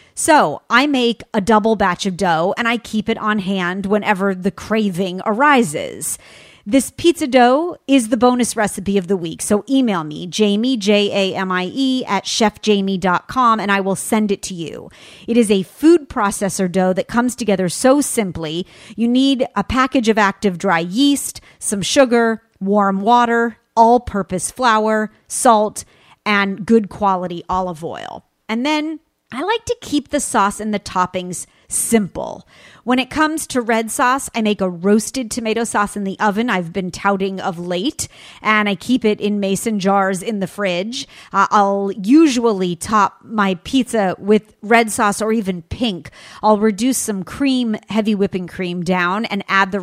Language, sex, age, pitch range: English, female, 40-59, 195-240 Hz